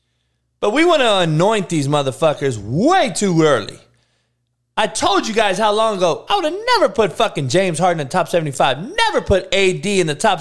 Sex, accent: male, American